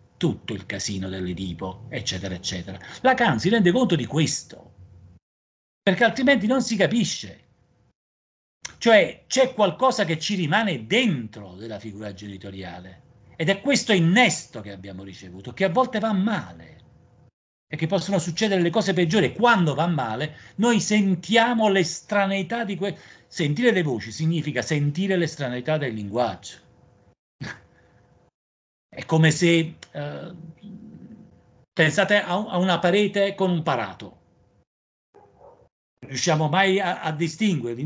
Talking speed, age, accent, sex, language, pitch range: 125 wpm, 40-59, native, male, Italian, 120-200 Hz